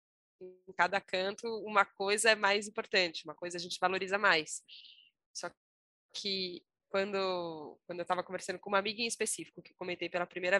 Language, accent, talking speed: Portuguese, Brazilian, 170 wpm